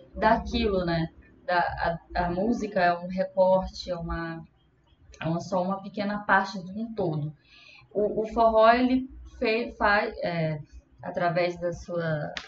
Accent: Brazilian